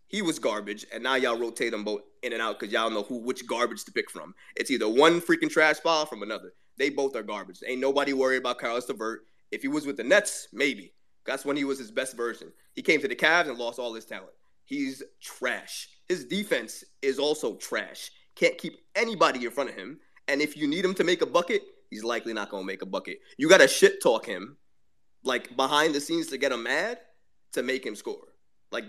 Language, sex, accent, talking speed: English, male, American, 235 wpm